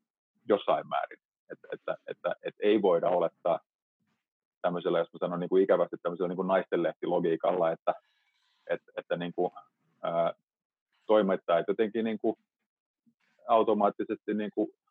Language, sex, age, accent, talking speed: Finnish, male, 30-49, native, 95 wpm